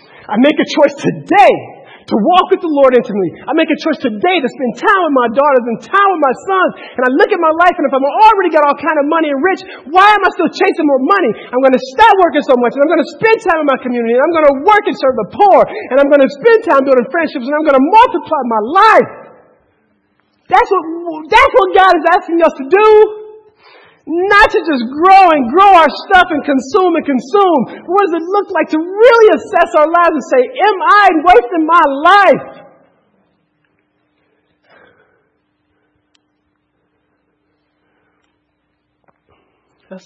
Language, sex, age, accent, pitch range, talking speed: English, male, 40-59, American, 255-380 Hz, 195 wpm